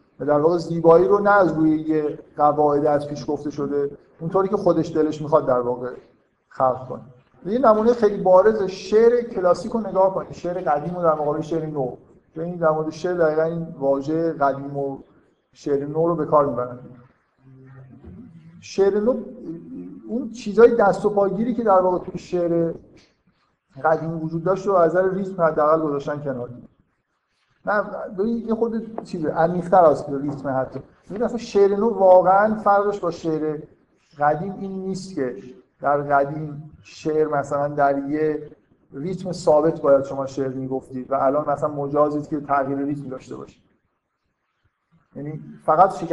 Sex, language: male, Persian